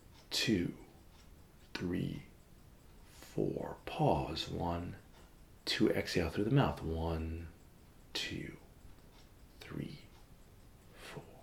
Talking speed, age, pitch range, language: 75 wpm, 40-59, 80-110 Hz, English